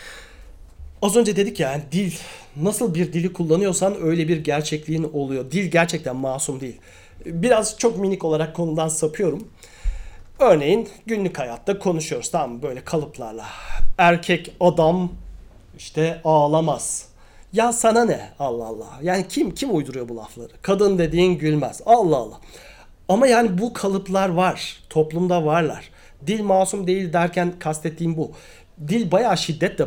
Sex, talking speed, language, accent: male, 135 wpm, Turkish, native